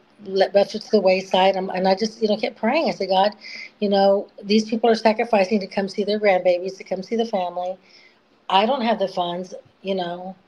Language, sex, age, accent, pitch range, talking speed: English, female, 40-59, American, 185-220 Hz, 220 wpm